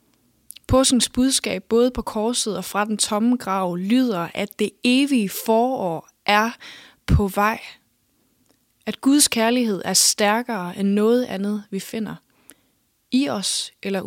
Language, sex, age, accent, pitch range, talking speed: English, female, 20-39, Danish, 195-235 Hz, 130 wpm